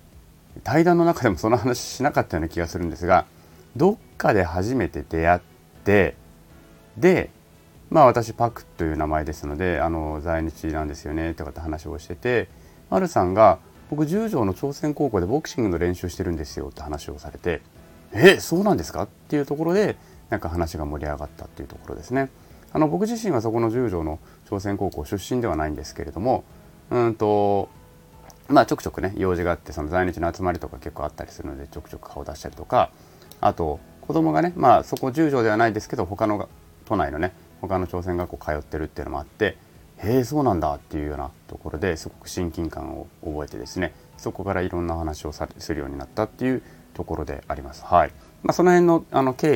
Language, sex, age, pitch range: Japanese, male, 30-49, 80-110 Hz